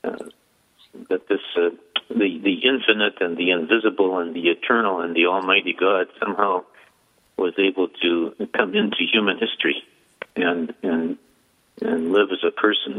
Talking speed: 150 wpm